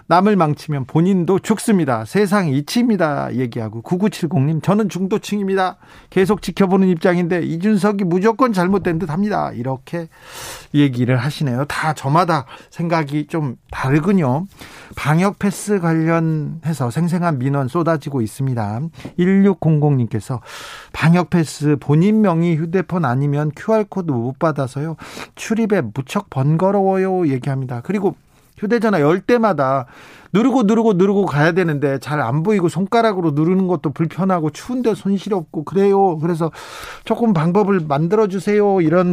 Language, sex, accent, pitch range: Korean, male, native, 140-195 Hz